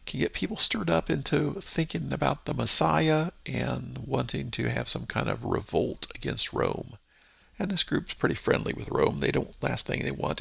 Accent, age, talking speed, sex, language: American, 50-69, 190 wpm, male, English